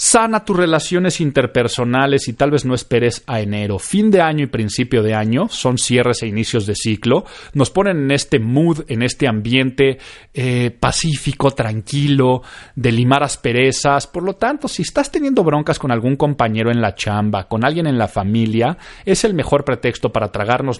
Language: Spanish